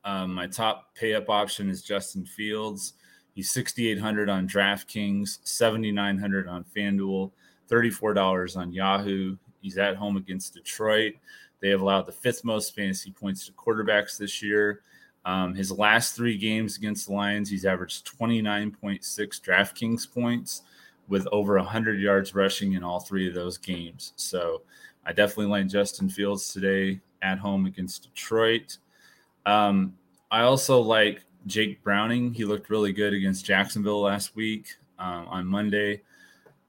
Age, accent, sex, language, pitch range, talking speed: 20-39, American, male, English, 95-110 Hz, 145 wpm